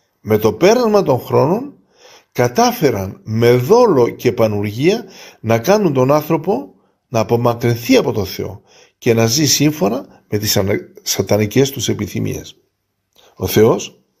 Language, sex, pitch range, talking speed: Greek, male, 115-185 Hz, 125 wpm